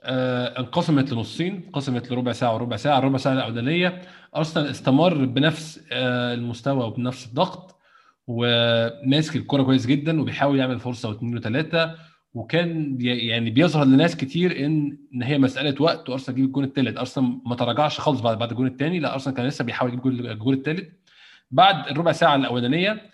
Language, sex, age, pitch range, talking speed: Arabic, male, 20-39, 125-150 Hz, 160 wpm